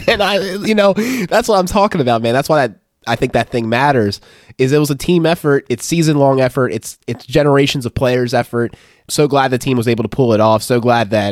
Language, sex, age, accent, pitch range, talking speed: English, male, 20-39, American, 105-140 Hz, 245 wpm